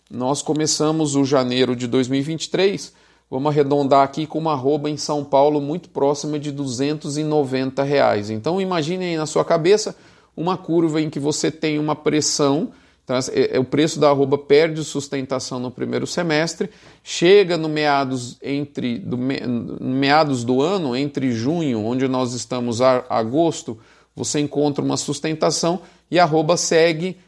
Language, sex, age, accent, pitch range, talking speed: Portuguese, male, 40-59, Brazilian, 140-165 Hz, 150 wpm